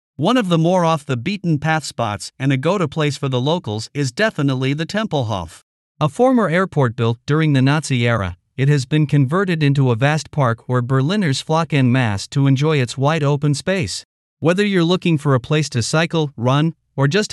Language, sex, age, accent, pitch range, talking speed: English, male, 50-69, American, 130-170 Hz, 185 wpm